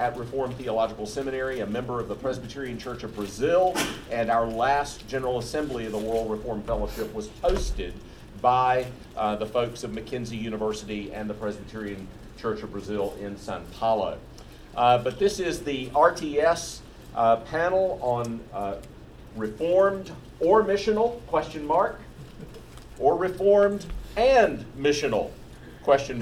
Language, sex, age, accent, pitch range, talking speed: English, male, 50-69, American, 110-140 Hz, 135 wpm